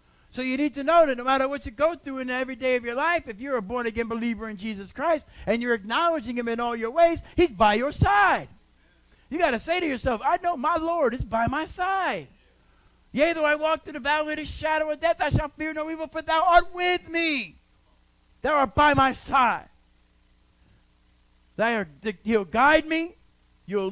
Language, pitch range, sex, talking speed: English, 195-300 Hz, male, 210 wpm